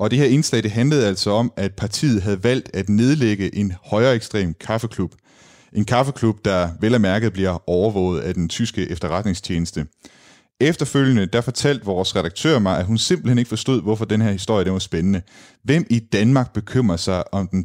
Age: 30-49